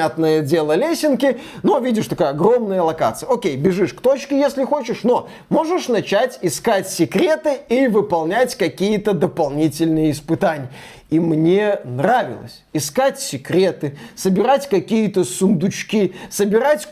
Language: Russian